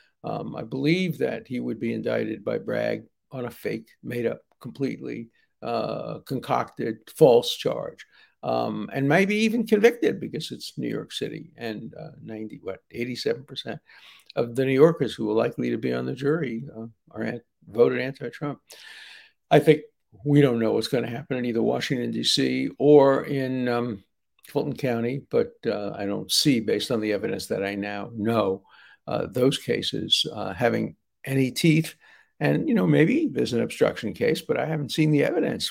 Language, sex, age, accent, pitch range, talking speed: English, male, 60-79, American, 115-160 Hz, 175 wpm